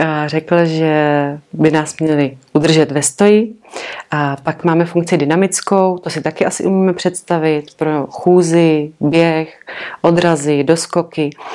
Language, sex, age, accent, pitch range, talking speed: Czech, female, 30-49, native, 155-180 Hz, 125 wpm